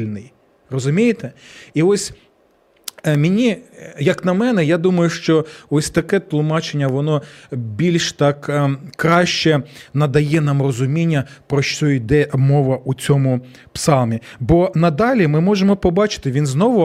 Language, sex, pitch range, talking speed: Ukrainian, male, 150-205 Hz, 130 wpm